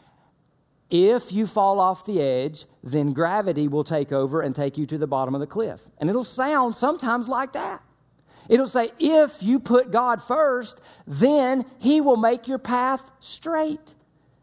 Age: 50-69